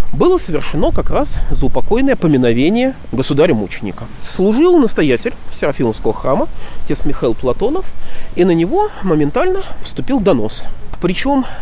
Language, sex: Russian, male